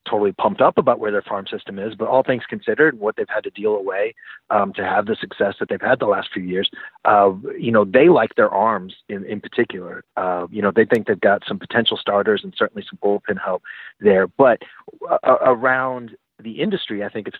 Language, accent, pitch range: English, American, 100-135 Hz